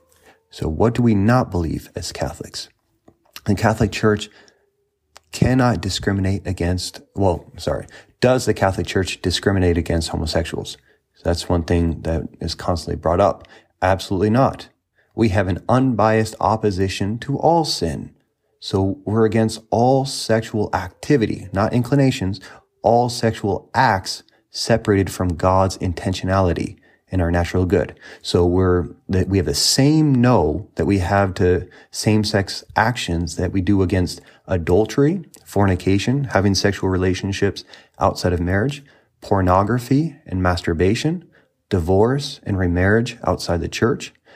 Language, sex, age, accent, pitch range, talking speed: English, male, 30-49, American, 90-120 Hz, 130 wpm